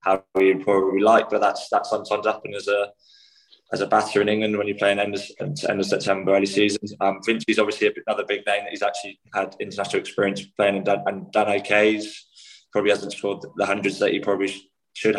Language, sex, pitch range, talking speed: English, male, 100-110 Hz, 205 wpm